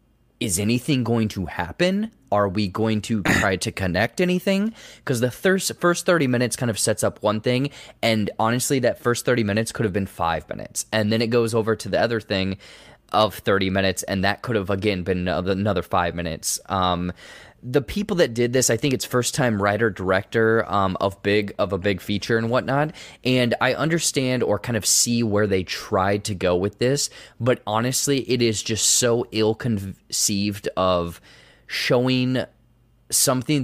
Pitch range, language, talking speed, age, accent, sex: 100-125 Hz, English, 180 wpm, 20-39, American, male